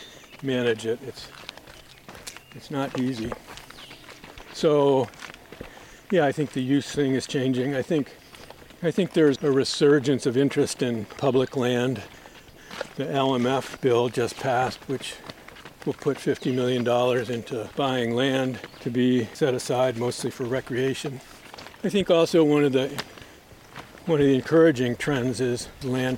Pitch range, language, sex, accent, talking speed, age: 125-140 Hz, English, male, American, 140 wpm, 50-69